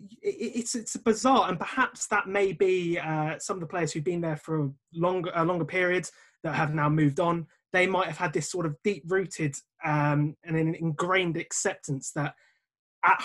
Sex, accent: male, British